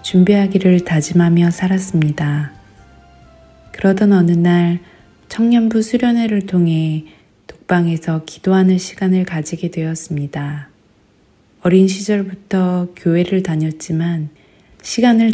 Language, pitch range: Korean, 160-190 Hz